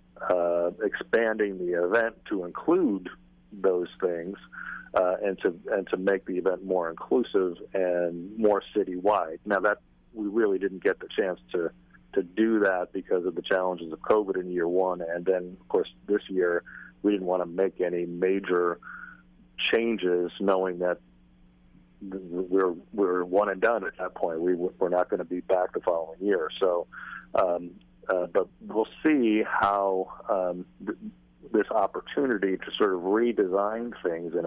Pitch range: 85-100 Hz